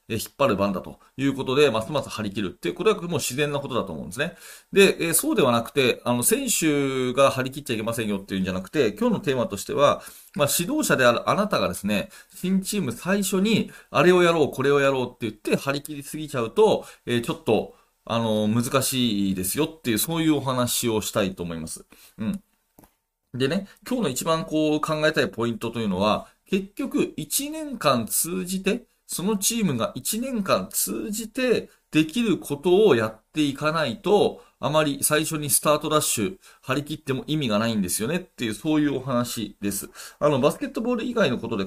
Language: Japanese